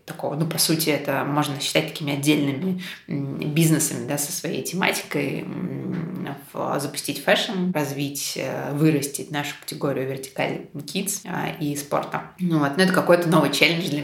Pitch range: 145-175 Hz